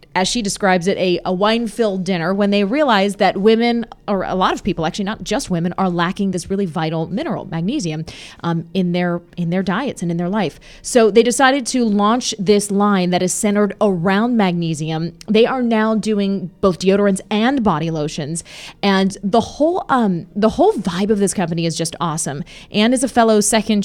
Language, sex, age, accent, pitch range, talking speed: English, female, 20-39, American, 175-215 Hz, 195 wpm